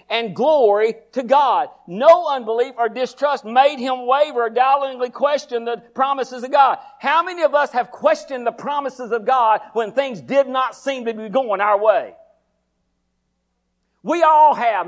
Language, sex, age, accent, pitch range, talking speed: English, male, 50-69, American, 260-320 Hz, 165 wpm